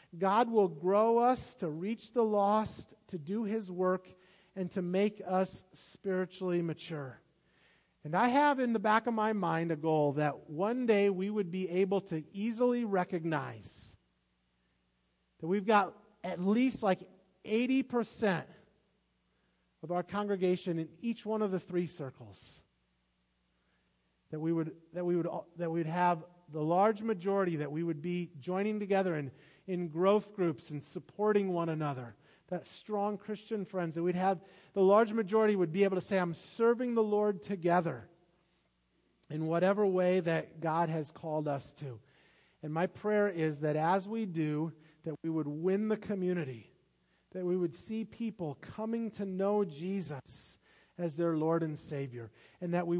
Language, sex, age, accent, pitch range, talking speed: English, male, 40-59, American, 155-200 Hz, 160 wpm